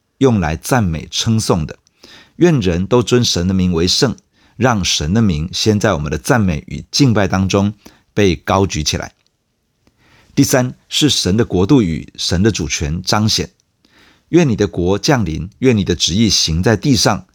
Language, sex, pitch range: Chinese, male, 90-115 Hz